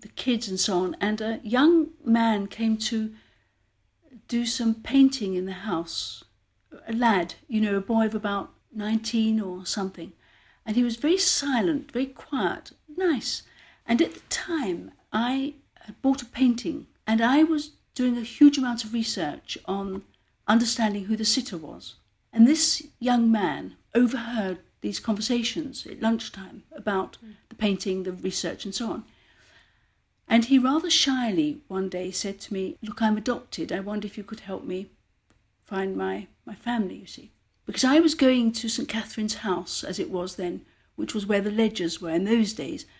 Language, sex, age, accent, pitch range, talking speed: English, female, 60-79, British, 200-245 Hz, 170 wpm